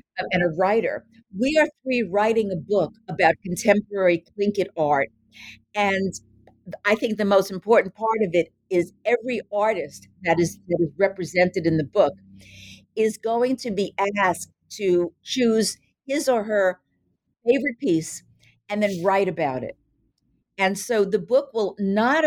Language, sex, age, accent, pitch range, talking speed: English, female, 50-69, American, 175-235 Hz, 150 wpm